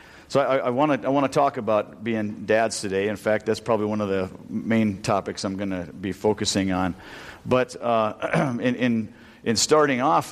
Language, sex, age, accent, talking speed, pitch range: English, male, 50-69, American, 190 wpm, 100-120 Hz